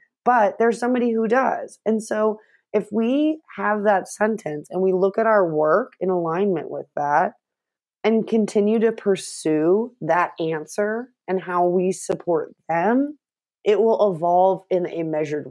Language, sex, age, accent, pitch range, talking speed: English, female, 30-49, American, 160-215 Hz, 150 wpm